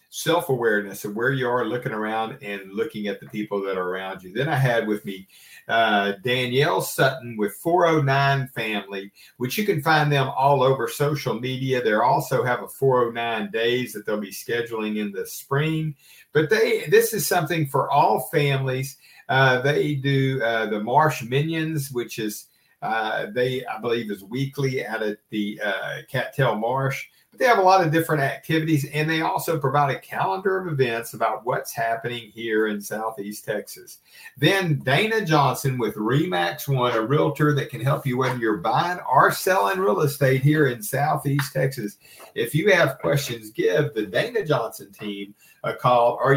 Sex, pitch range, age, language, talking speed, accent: male, 110-150 Hz, 50-69, English, 175 wpm, American